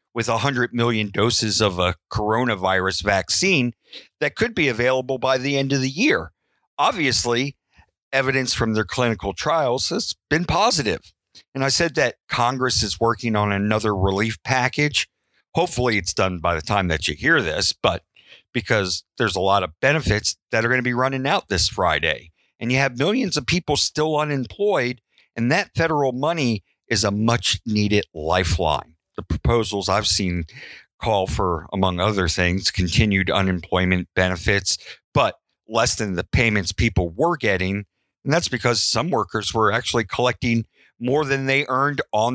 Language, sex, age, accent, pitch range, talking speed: English, male, 50-69, American, 95-125 Hz, 160 wpm